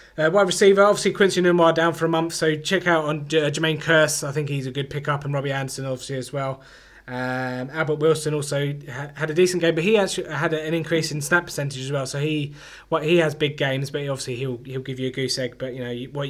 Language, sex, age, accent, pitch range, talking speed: English, male, 20-39, British, 130-165 Hz, 270 wpm